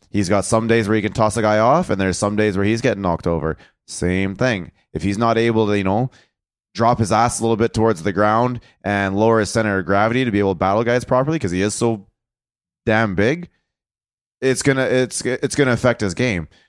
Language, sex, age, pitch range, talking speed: English, male, 20-39, 95-115 Hz, 235 wpm